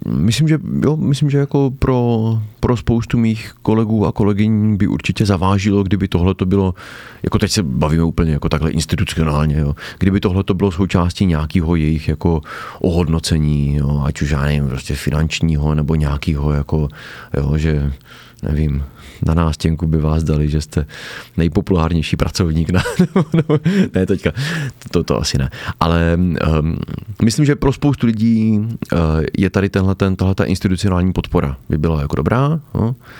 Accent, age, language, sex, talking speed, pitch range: native, 30-49, Czech, male, 155 wpm, 80-105 Hz